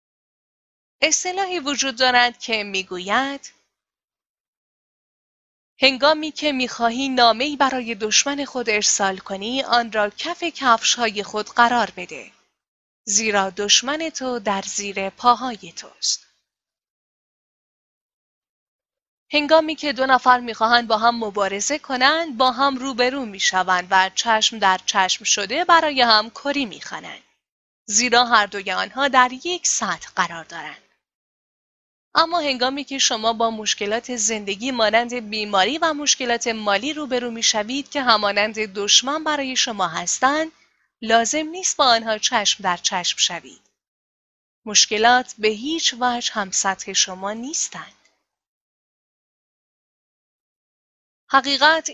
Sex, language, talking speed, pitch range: female, Persian, 110 wpm, 215-275 Hz